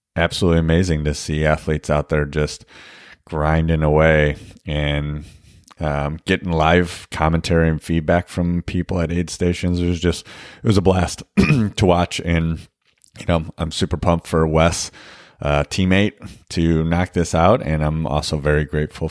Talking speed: 155 wpm